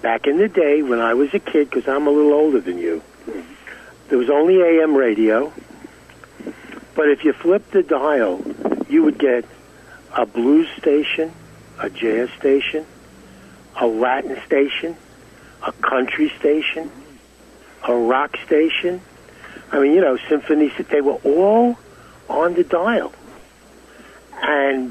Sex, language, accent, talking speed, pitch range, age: male, English, American, 135 wpm, 130-175 Hz, 60-79